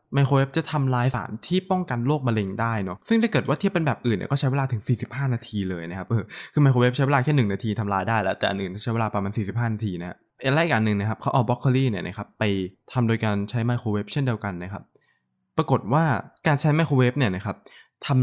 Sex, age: male, 20-39